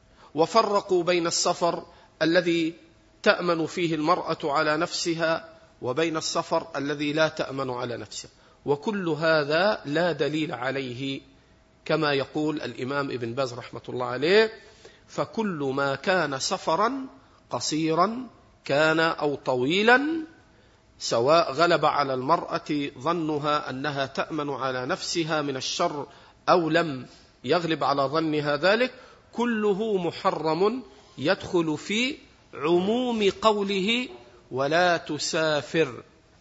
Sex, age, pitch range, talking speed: male, 40-59, 140-190 Hz, 100 wpm